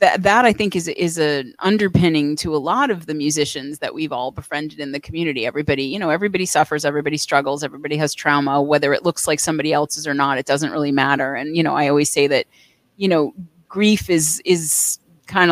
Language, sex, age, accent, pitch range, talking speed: English, female, 30-49, American, 150-180 Hz, 215 wpm